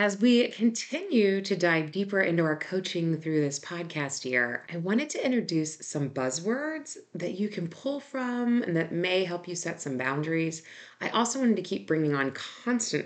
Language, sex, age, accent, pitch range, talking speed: English, female, 30-49, American, 150-205 Hz, 185 wpm